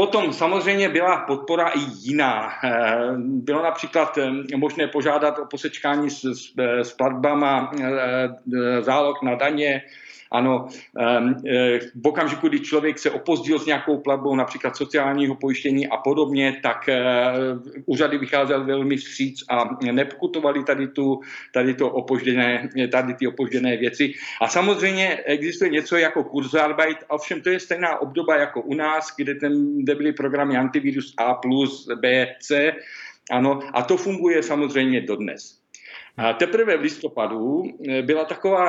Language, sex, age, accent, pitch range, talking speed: Czech, male, 50-69, native, 130-165 Hz, 130 wpm